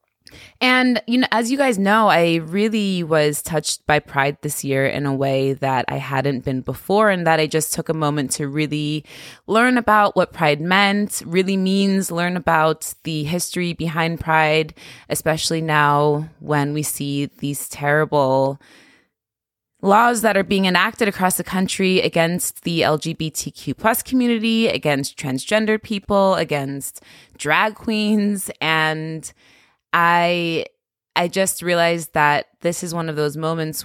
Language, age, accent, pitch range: English, 20-39, American, 150-195 Hz